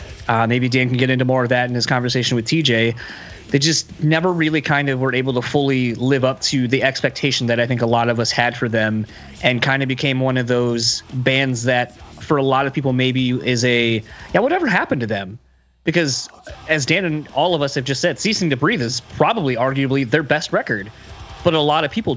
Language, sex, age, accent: English, male, 30-49, American